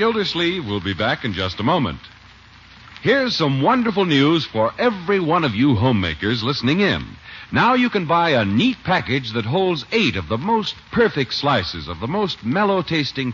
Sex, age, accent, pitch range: male, 60-79, American, 110-180 Hz